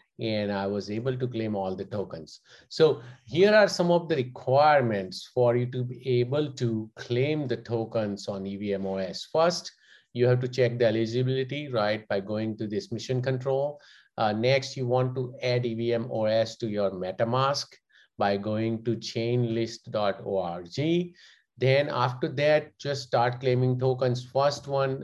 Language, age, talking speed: English, 50-69, 155 wpm